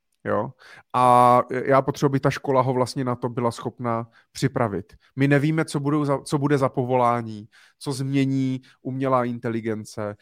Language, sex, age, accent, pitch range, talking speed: Czech, male, 30-49, native, 115-130 Hz, 160 wpm